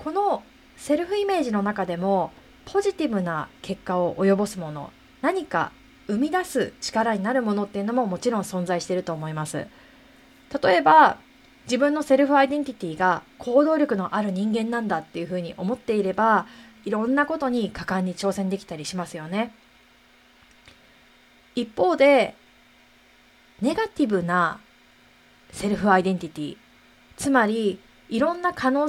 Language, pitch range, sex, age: Japanese, 180-260 Hz, female, 20-39